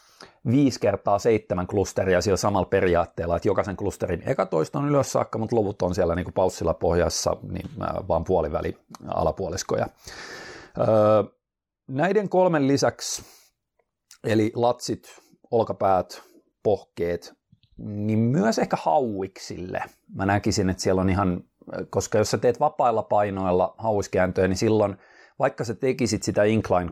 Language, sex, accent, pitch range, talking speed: Finnish, male, native, 90-115 Hz, 125 wpm